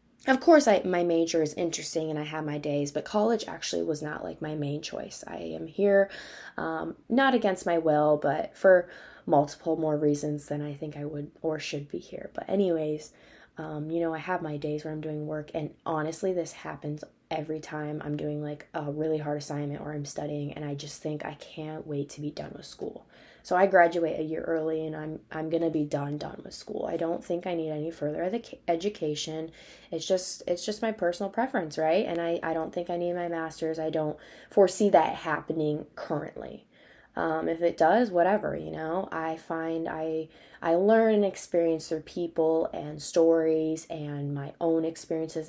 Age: 20-39